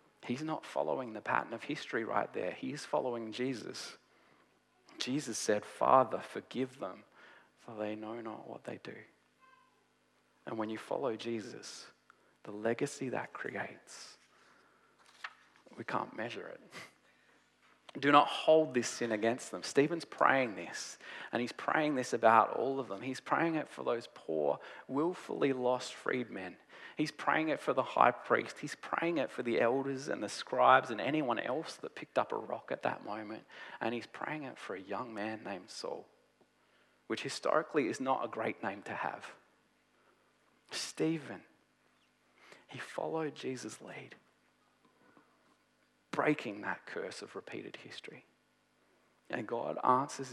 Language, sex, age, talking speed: English, male, 30-49, 150 wpm